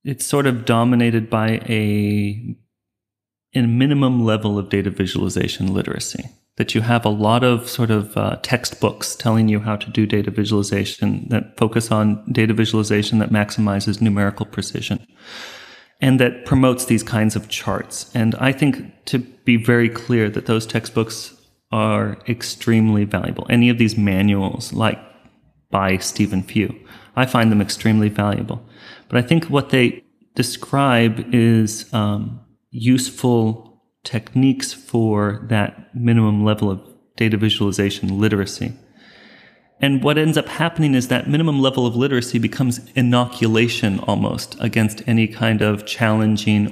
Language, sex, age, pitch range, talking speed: English, male, 30-49, 105-120 Hz, 140 wpm